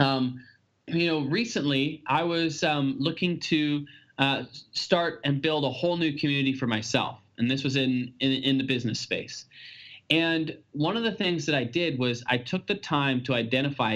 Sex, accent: male, American